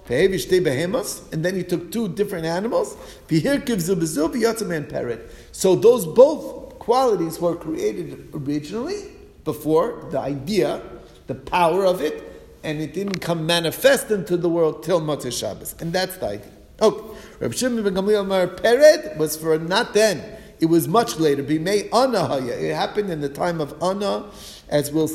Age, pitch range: 50-69, 155-205 Hz